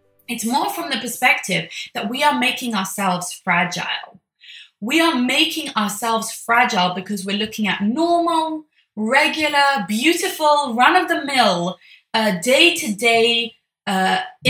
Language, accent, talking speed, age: English, British, 130 wpm, 20-39